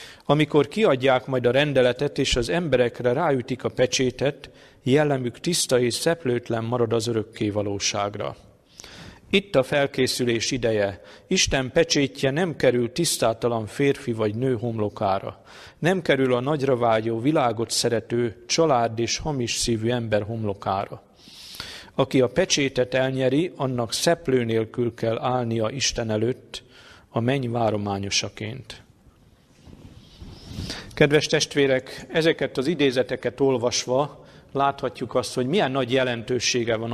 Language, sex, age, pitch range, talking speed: Hungarian, male, 50-69, 115-140 Hz, 115 wpm